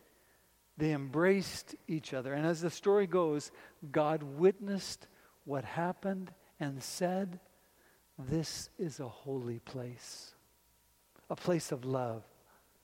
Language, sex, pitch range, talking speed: English, male, 135-180 Hz, 110 wpm